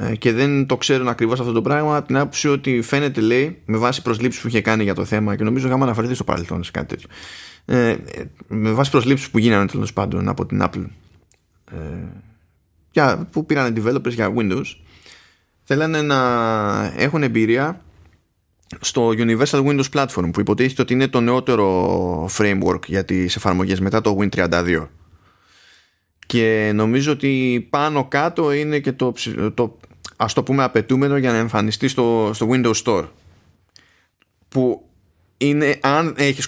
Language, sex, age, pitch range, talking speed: Greek, male, 20-39, 95-125 Hz, 155 wpm